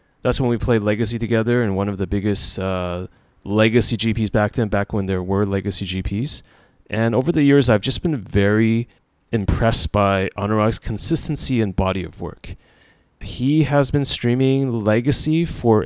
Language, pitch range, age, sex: English, 100-125 Hz, 30-49, male